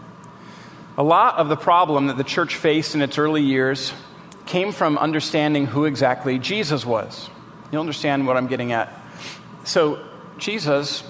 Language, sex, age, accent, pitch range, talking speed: English, male, 40-59, American, 145-195 Hz, 150 wpm